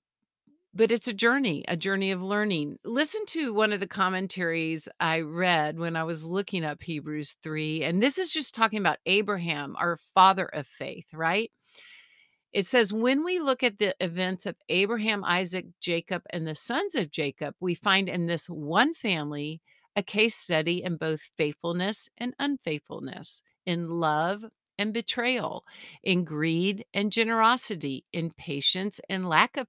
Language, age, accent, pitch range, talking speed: English, 50-69, American, 160-210 Hz, 160 wpm